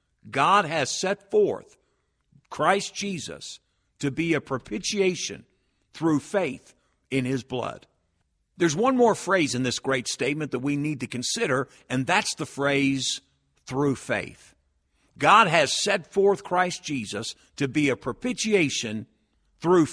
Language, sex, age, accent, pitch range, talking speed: English, male, 50-69, American, 125-205 Hz, 135 wpm